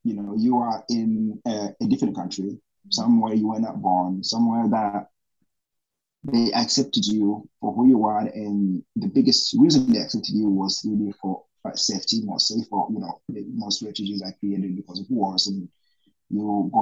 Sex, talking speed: male, 180 wpm